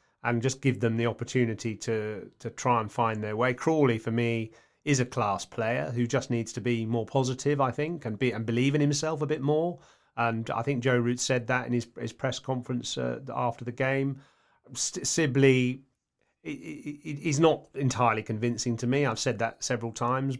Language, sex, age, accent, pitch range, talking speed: English, male, 30-49, British, 120-140 Hz, 195 wpm